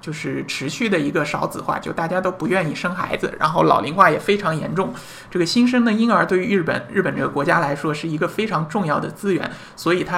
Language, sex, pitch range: Chinese, male, 145-190 Hz